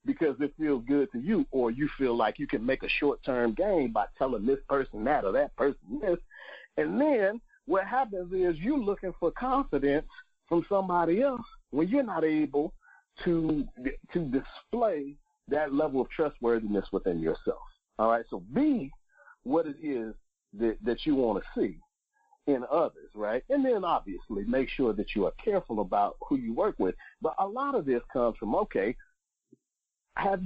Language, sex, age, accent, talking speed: English, male, 50-69, American, 175 wpm